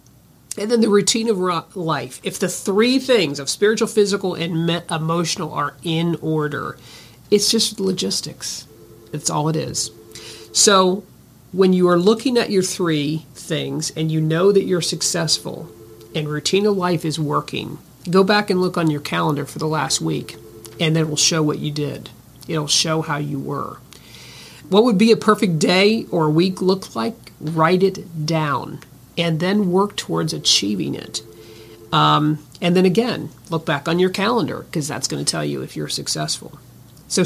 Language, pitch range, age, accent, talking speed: English, 150-190 Hz, 50-69, American, 180 wpm